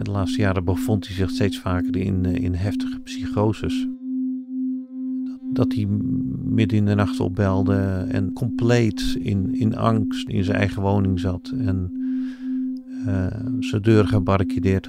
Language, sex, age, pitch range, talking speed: Dutch, male, 50-69, 90-130 Hz, 135 wpm